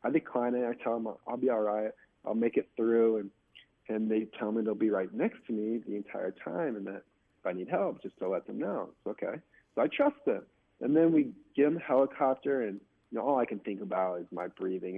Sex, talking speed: male, 255 wpm